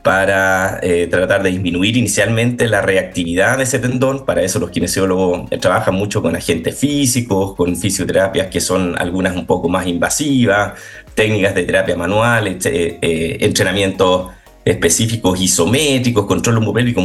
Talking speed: 140 wpm